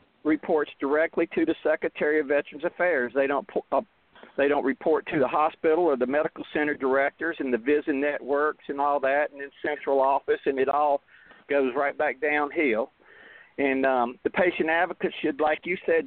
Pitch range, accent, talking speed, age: 140-180 Hz, American, 185 wpm, 50-69